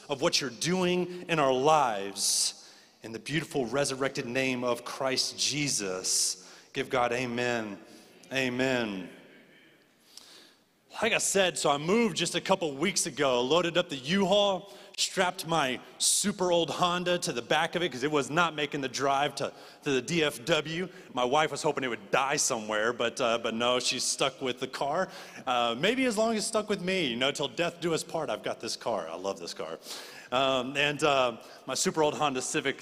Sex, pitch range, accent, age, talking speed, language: male, 125-170 Hz, American, 30-49, 190 wpm, English